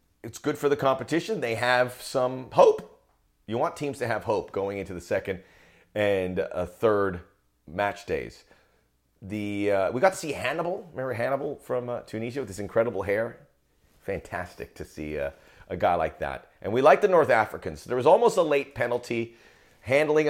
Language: English